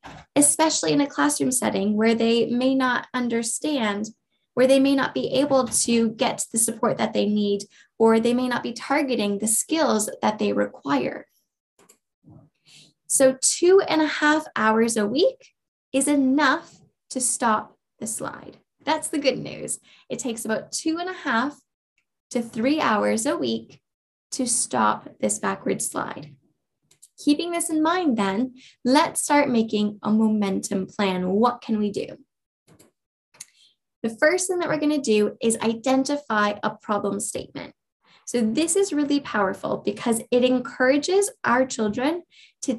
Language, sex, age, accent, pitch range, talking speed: English, female, 10-29, American, 210-280 Hz, 150 wpm